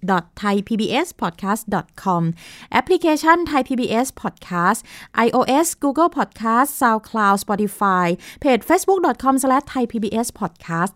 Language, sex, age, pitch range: Thai, female, 20-39, 175-255 Hz